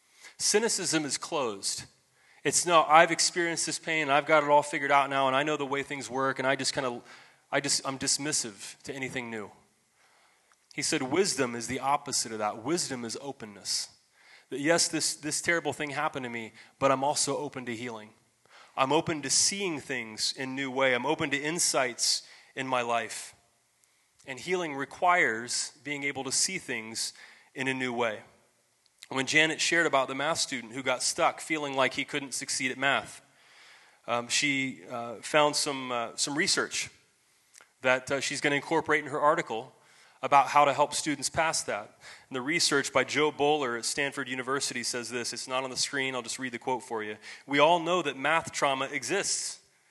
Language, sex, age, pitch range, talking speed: English, male, 30-49, 125-150 Hz, 190 wpm